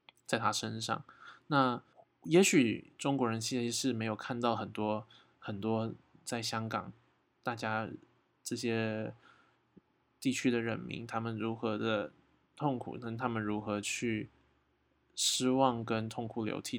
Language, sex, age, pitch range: Chinese, male, 20-39, 115-140 Hz